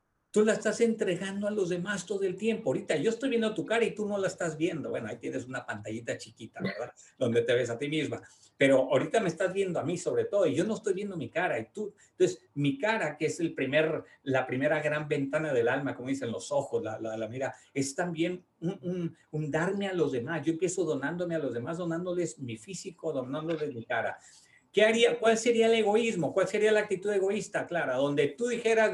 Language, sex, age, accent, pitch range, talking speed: Spanish, male, 50-69, Mexican, 135-205 Hz, 230 wpm